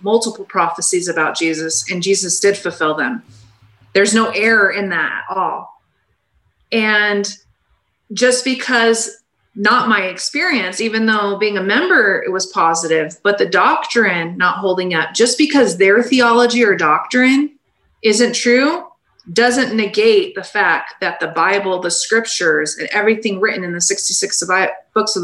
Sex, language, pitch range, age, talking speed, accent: female, English, 185-225 Hz, 30-49, 145 wpm, American